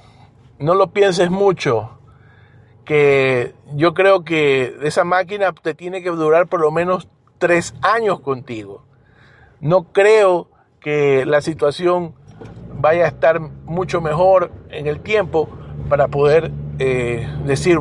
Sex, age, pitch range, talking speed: male, 50-69, 130-170 Hz, 125 wpm